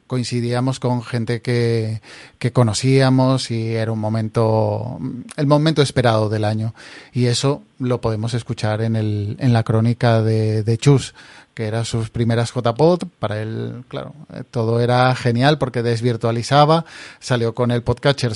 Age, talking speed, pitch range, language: 30-49, 145 wpm, 115-135 Hz, Spanish